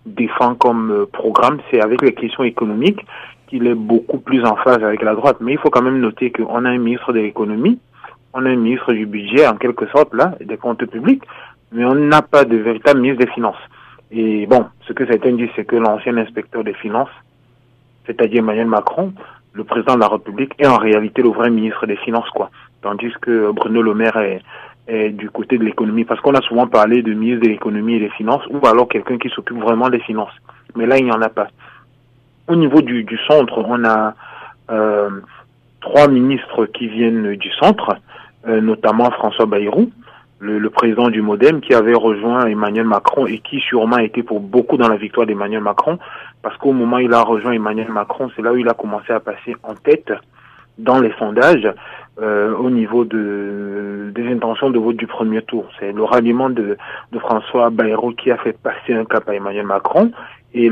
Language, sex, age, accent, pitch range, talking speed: French, male, 30-49, French, 110-125 Hz, 205 wpm